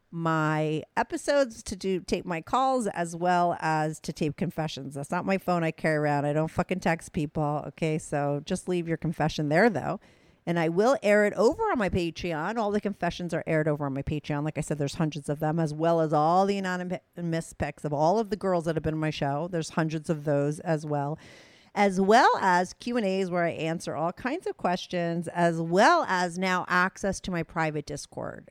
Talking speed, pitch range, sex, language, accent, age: 220 wpm, 155-190 Hz, female, English, American, 40-59